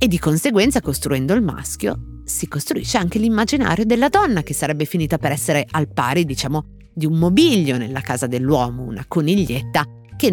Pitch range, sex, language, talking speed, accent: 125-175 Hz, female, Italian, 170 wpm, native